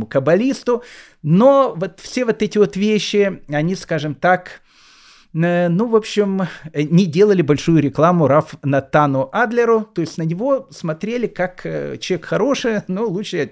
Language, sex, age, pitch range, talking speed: Russian, male, 30-49, 135-190 Hz, 140 wpm